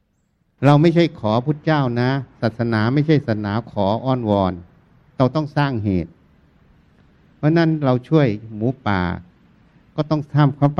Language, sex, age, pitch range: Thai, male, 60-79, 105-145 Hz